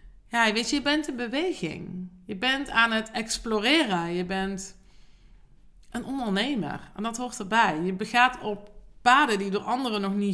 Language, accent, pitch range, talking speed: Dutch, Dutch, 185-235 Hz, 165 wpm